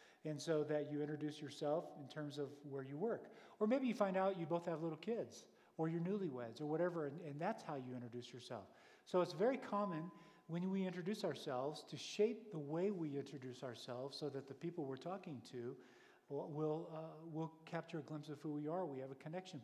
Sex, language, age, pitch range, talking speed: male, English, 50-69, 140-175 Hz, 215 wpm